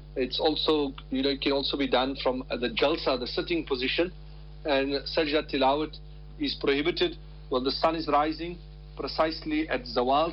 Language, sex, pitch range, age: English, male, 135-155 Hz, 50-69